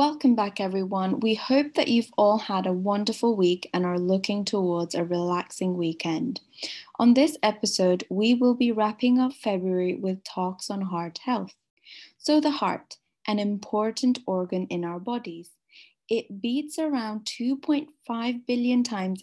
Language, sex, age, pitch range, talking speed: English, female, 10-29, 185-240 Hz, 150 wpm